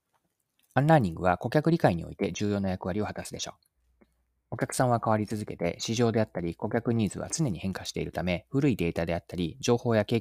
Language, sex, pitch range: Japanese, male, 90-125 Hz